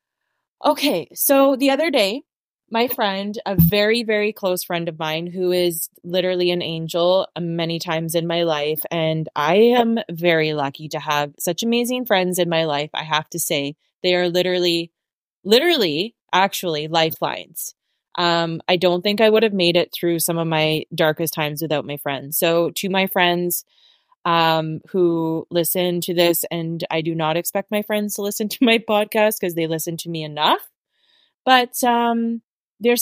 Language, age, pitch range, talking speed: English, 20-39, 165-215 Hz, 175 wpm